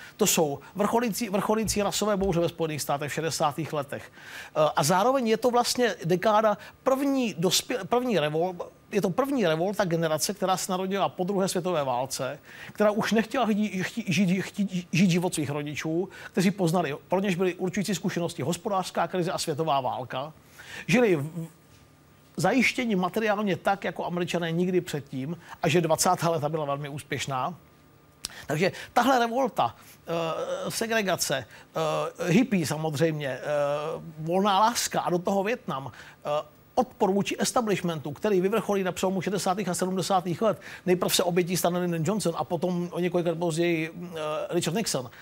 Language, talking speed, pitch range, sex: Czech, 135 wpm, 160-200 Hz, male